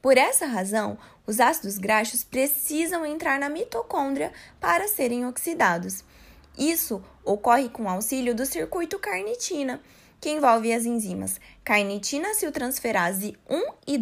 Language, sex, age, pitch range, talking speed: Portuguese, female, 20-39, 230-315 Hz, 125 wpm